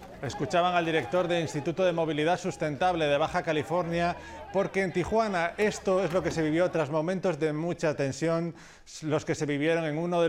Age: 30-49